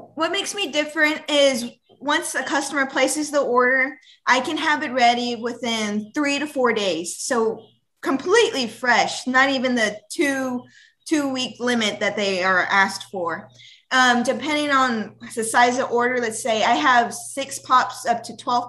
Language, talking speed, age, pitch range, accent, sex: English, 160 wpm, 20-39, 215-260 Hz, American, female